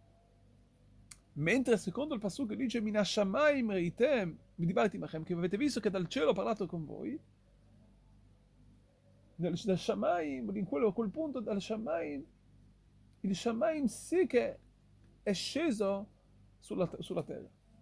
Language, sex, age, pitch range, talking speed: Italian, male, 40-59, 170-250 Hz, 130 wpm